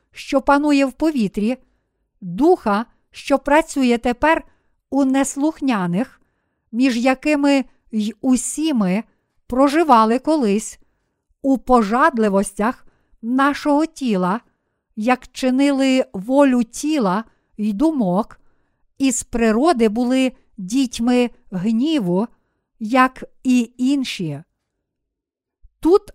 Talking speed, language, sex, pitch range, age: 85 wpm, Ukrainian, female, 215-275 Hz, 50-69